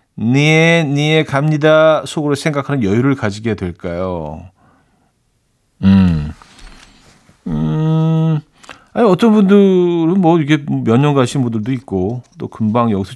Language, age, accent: Korean, 40-59, native